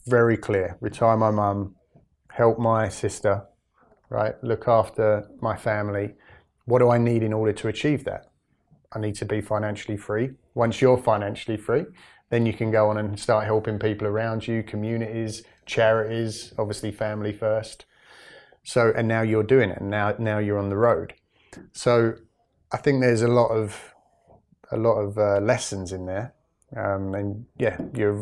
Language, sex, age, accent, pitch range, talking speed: English, male, 30-49, British, 105-120 Hz, 170 wpm